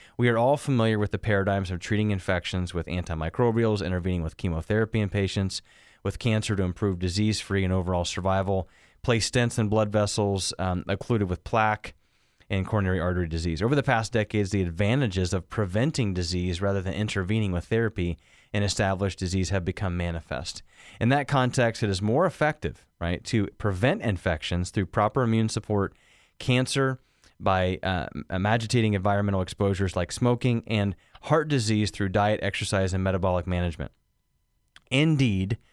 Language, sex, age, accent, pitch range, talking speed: English, male, 30-49, American, 90-110 Hz, 155 wpm